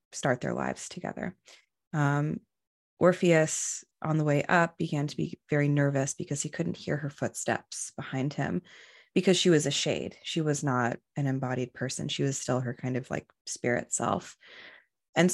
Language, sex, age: English, female, 20-39